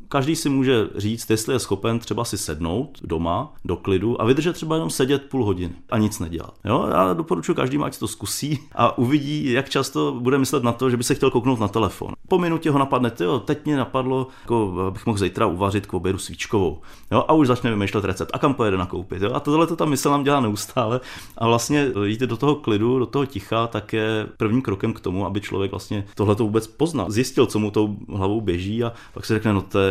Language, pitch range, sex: Czech, 100-130 Hz, male